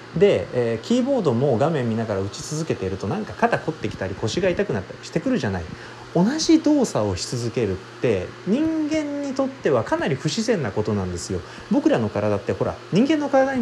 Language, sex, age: Japanese, male, 30-49